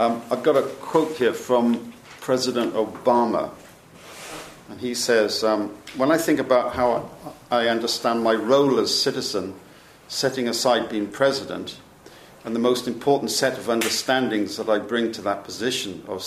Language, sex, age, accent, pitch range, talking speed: English, male, 50-69, British, 110-125 Hz, 155 wpm